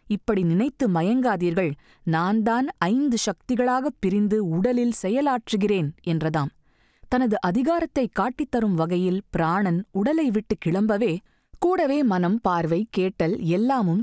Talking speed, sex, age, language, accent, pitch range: 100 wpm, female, 20-39, Tamil, native, 165-245 Hz